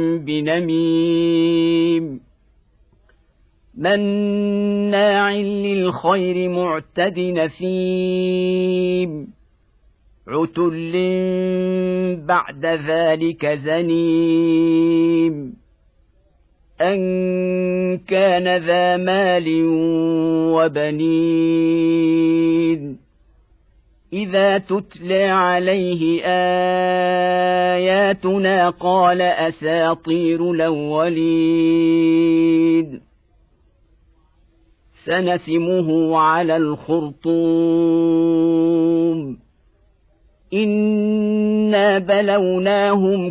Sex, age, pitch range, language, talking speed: male, 50-69, 160-185 Hz, Arabic, 35 wpm